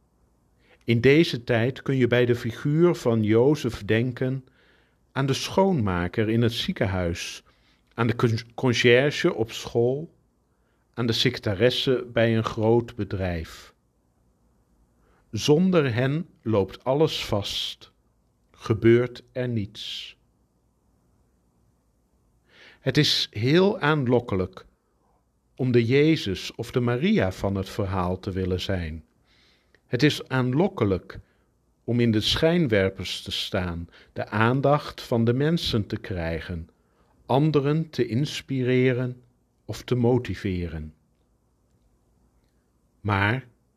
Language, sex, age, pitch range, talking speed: Dutch, male, 50-69, 95-130 Hz, 105 wpm